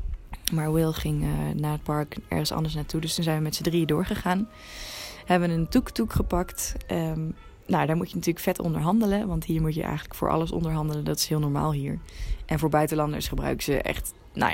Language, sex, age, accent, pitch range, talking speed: Dutch, female, 20-39, Dutch, 150-190 Hz, 210 wpm